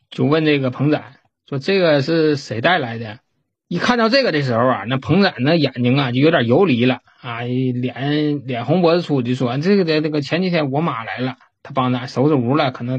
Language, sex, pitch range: Chinese, male, 125-165 Hz